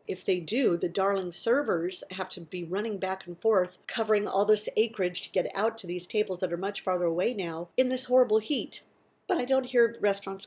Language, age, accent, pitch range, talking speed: English, 50-69, American, 170-205 Hz, 220 wpm